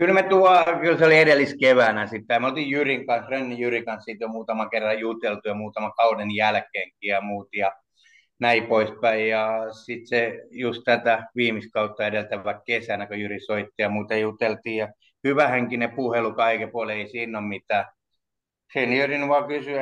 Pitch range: 110-140 Hz